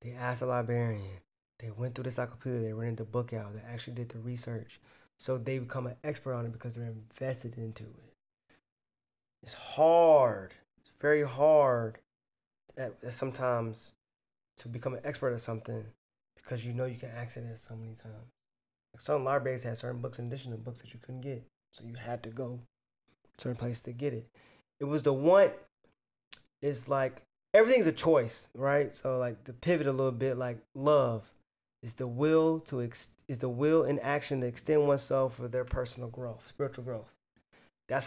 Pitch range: 120-140 Hz